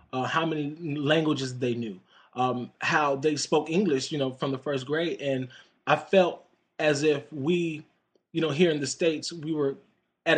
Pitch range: 135-155 Hz